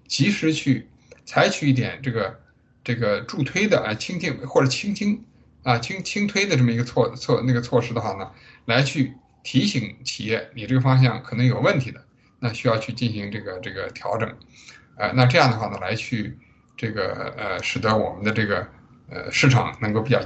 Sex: male